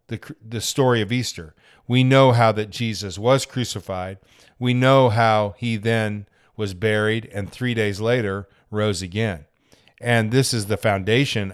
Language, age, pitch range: English, 40-59, 105-135 Hz